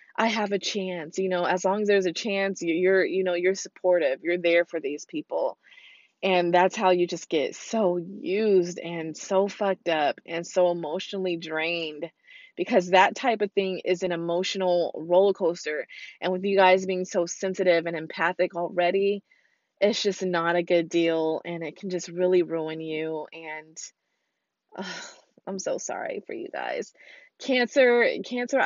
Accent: American